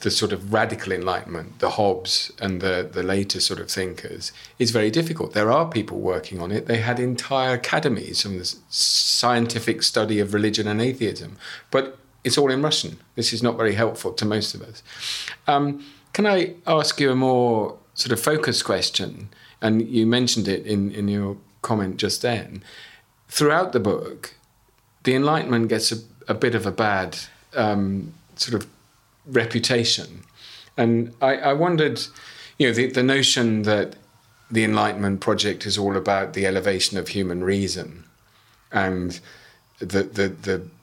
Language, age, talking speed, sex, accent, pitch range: English, 40-59, 165 wpm, male, British, 100-130 Hz